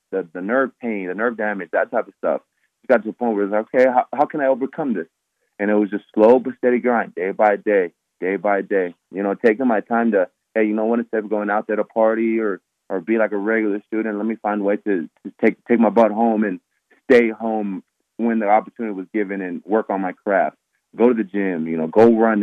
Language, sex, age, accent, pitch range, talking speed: English, male, 20-39, American, 105-120 Hz, 260 wpm